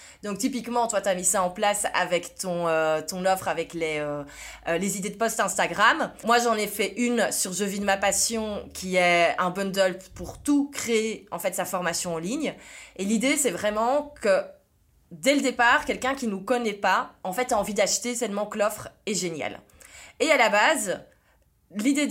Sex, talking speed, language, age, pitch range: female, 205 wpm, French, 20-39, 185-235 Hz